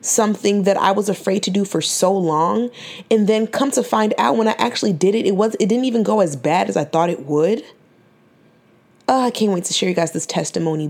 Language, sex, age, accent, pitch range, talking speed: English, female, 20-39, American, 175-235 Hz, 240 wpm